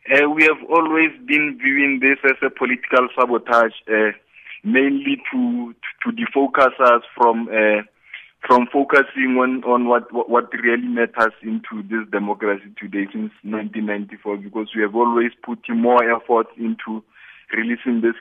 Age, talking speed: 20-39, 150 wpm